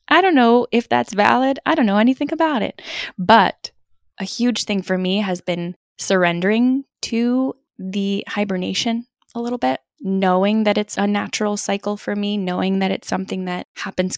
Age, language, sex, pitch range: 20-39, English, female, 175-220 Hz